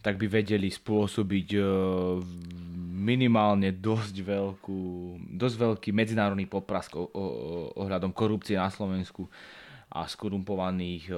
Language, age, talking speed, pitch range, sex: Slovak, 20-39, 90 wpm, 95-110 Hz, male